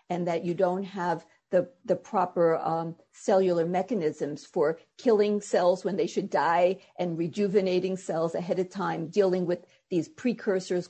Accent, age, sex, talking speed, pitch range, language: American, 50-69, female, 155 wpm, 175-215 Hz, English